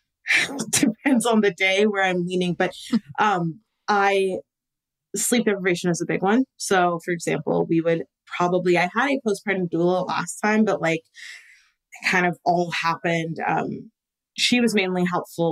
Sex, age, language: female, 20-39, English